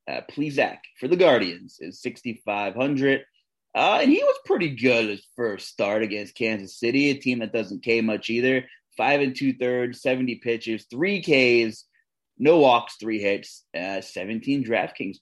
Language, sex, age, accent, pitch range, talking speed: English, male, 30-49, American, 110-150 Hz, 160 wpm